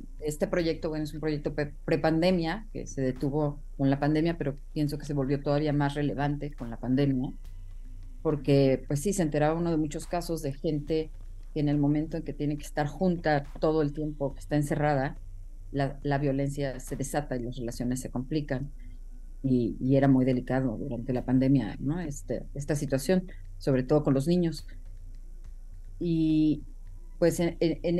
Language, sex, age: Spanish, female, 40-59